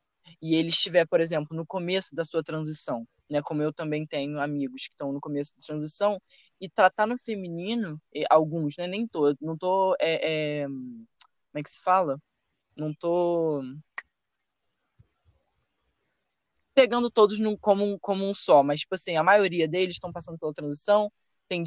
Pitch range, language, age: 155-215 Hz, Portuguese, 20-39